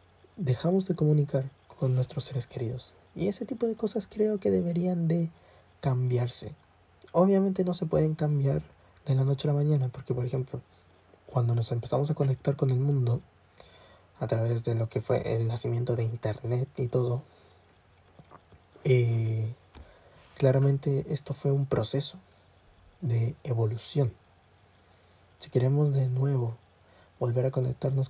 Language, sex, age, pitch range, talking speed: Spanish, male, 20-39, 105-140 Hz, 140 wpm